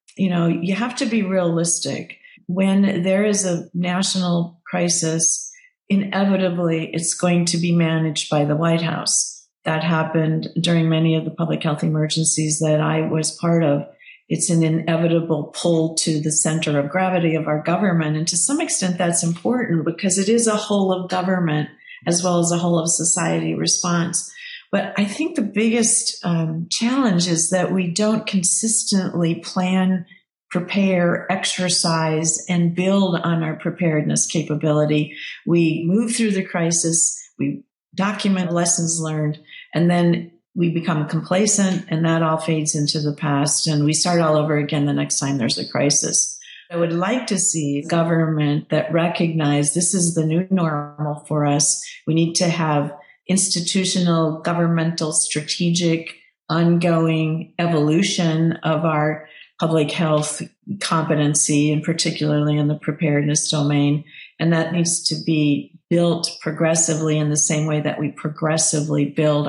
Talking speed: 150 wpm